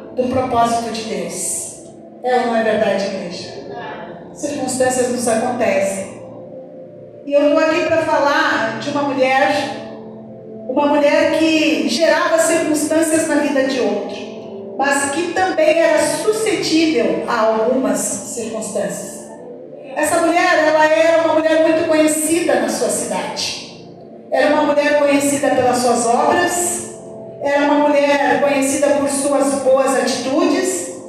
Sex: female